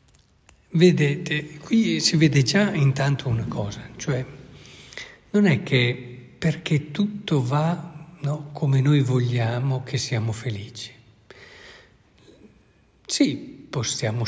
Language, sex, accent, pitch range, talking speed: Italian, male, native, 120-145 Hz, 95 wpm